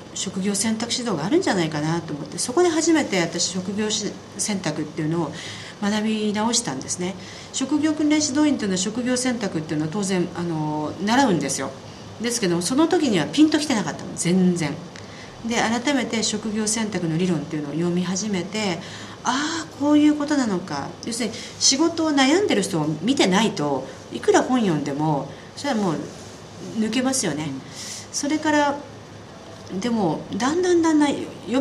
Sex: female